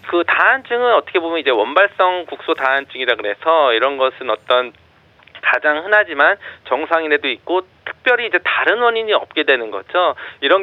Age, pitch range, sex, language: 40-59, 125-185 Hz, male, Korean